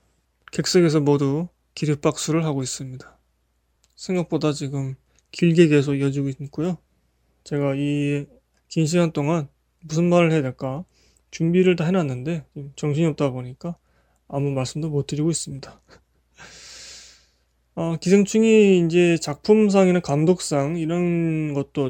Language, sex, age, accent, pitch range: Korean, male, 20-39, native, 130-170 Hz